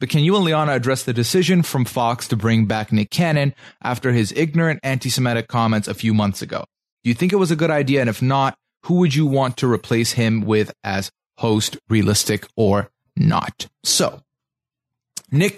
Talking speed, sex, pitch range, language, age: 195 wpm, male, 110-145 Hz, English, 30-49